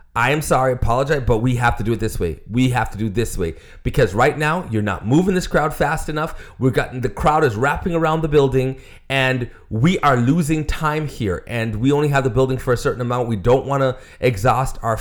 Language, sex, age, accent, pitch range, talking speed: English, male, 30-49, American, 110-145 Hz, 240 wpm